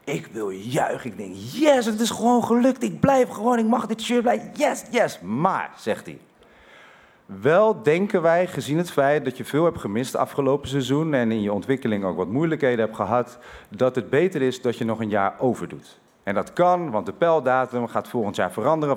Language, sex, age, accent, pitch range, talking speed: Dutch, male, 40-59, Dutch, 115-165 Hz, 210 wpm